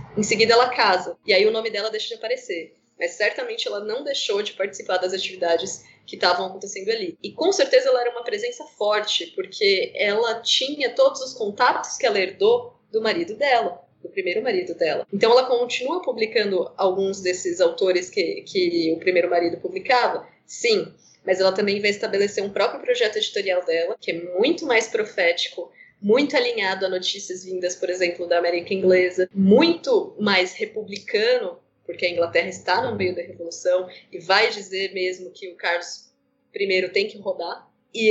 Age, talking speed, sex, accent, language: 20-39, 175 wpm, female, Brazilian, Portuguese